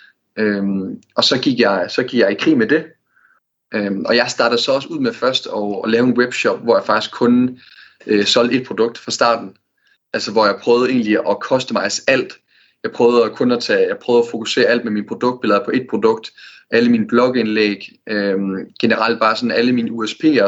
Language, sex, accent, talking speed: Danish, male, native, 200 wpm